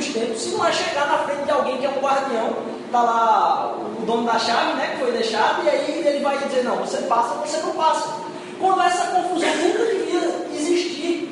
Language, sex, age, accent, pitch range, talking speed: Portuguese, male, 20-39, Brazilian, 245-330 Hz, 210 wpm